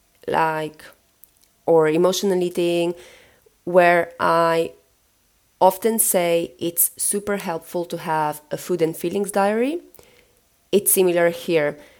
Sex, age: female, 30-49